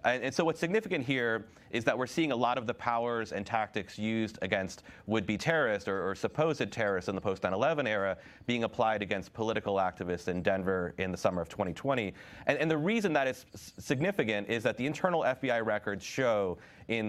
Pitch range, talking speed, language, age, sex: 100-130 Hz, 195 wpm, English, 30-49, male